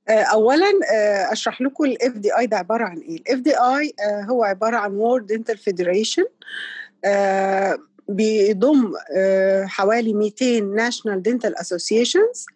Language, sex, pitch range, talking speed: Arabic, female, 210-290 Hz, 110 wpm